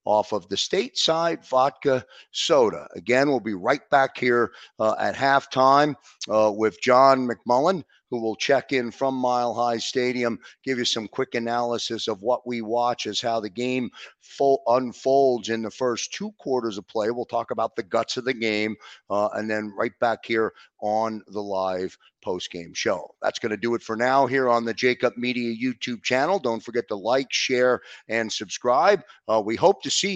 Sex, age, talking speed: male, 50-69, 185 wpm